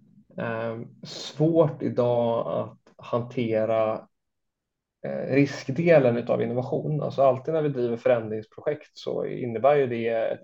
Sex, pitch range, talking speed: male, 115-140 Hz, 115 wpm